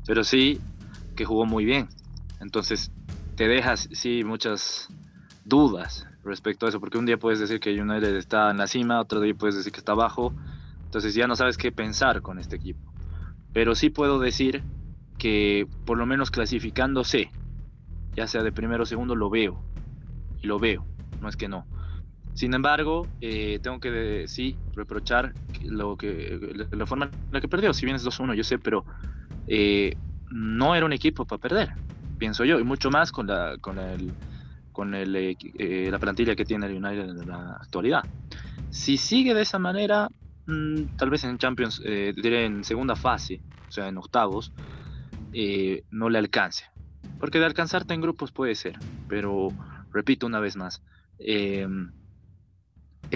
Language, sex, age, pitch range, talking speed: Spanish, male, 20-39, 95-125 Hz, 165 wpm